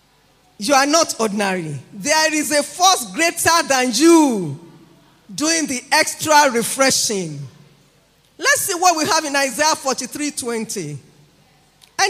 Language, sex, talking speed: English, female, 110 wpm